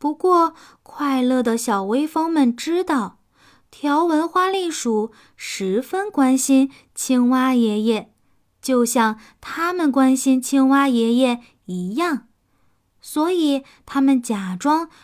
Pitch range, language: 230-300 Hz, Chinese